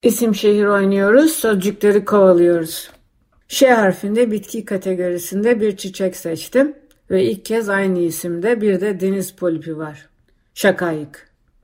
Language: Turkish